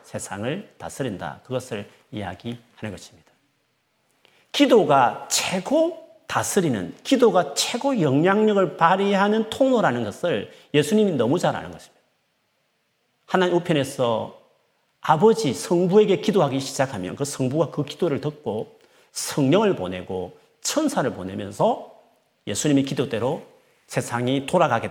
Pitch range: 125-205 Hz